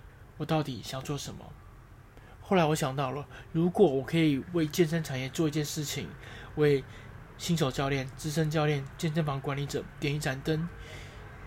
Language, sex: Chinese, male